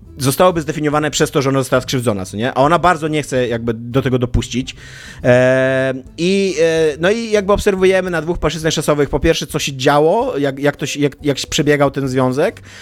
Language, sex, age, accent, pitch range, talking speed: Polish, male, 30-49, native, 130-155 Hz, 210 wpm